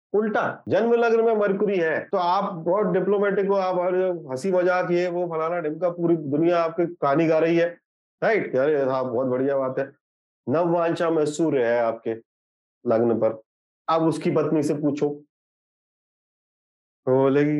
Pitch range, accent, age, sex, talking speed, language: 130-185 Hz, native, 30-49, male, 135 wpm, Hindi